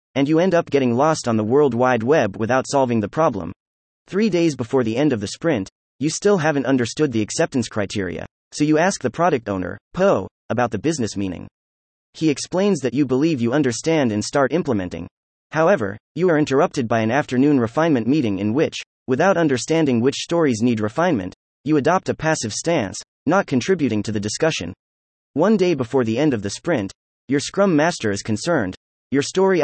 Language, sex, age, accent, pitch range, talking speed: English, male, 30-49, American, 105-160 Hz, 190 wpm